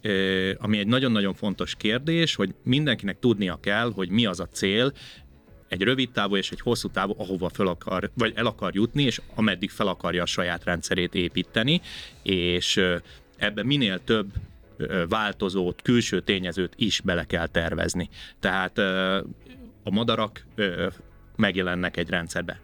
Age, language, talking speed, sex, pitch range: 30-49, Hungarian, 140 wpm, male, 95-125 Hz